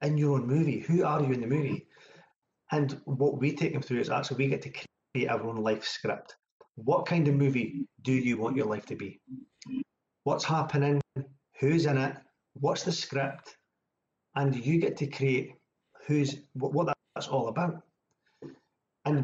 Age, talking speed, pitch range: 40-59, 175 wpm, 120-150 Hz